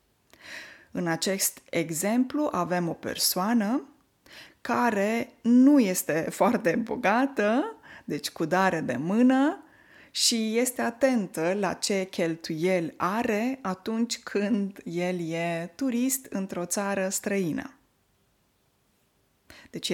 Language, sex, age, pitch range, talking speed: Romanian, female, 20-39, 180-250 Hz, 95 wpm